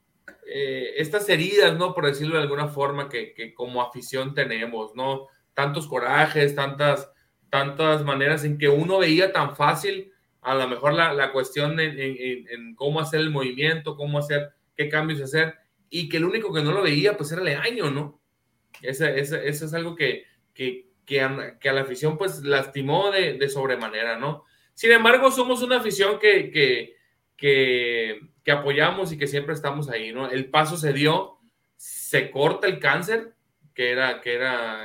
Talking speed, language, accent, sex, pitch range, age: 175 wpm, Spanish, Mexican, male, 135-195 Hz, 30-49